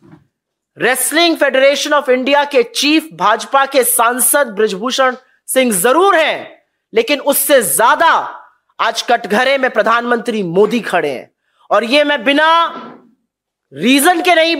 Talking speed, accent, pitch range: 125 wpm, Indian, 260-335 Hz